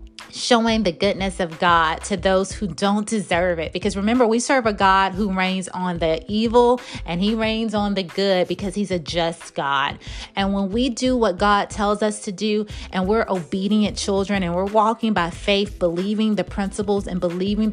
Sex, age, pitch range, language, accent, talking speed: female, 30-49, 180-220 Hz, English, American, 195 wpm